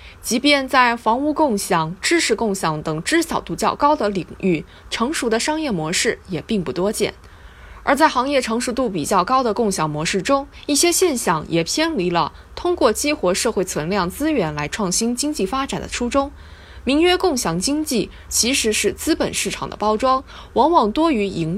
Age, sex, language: 20-39, female, Chinese